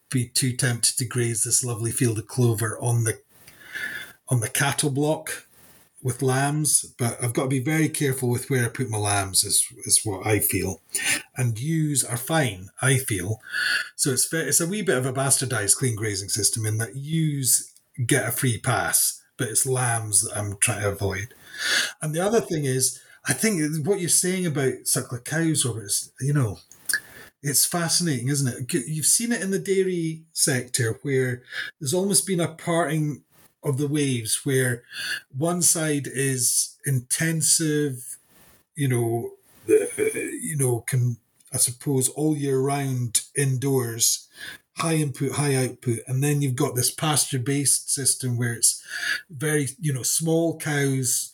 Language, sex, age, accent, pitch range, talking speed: English, male, 30-49, British, 120-150 Hz, 165 wpm